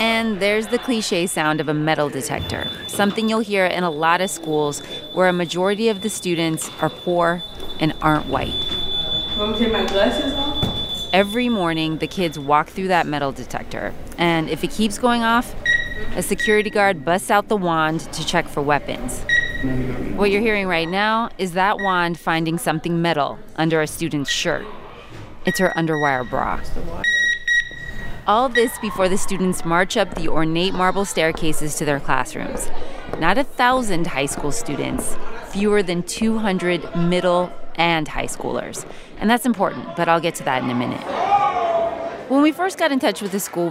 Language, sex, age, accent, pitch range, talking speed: English, female, 30-49, American, 160-210 Hz, 165 wpm